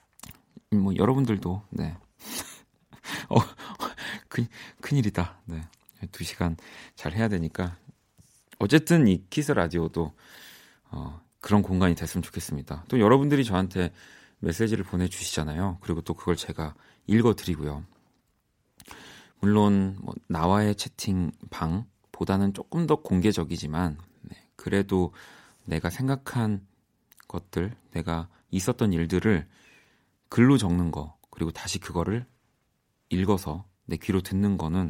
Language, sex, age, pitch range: Korean, male, 40-59, 85-115 Hz